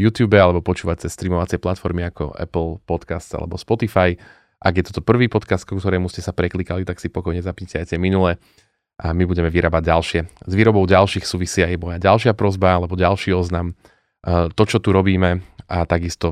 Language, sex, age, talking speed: Slovak, male, 30-49, 180 wpm